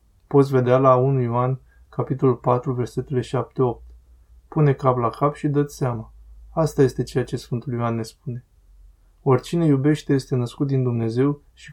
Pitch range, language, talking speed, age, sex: 115-140 Hz, Romanian, 160 wpm, 20-39, male